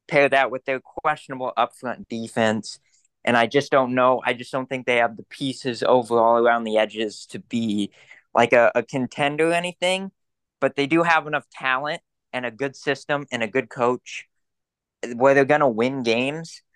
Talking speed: 185 wpm